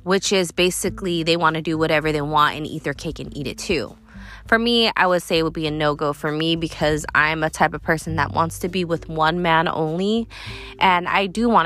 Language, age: English, 20-39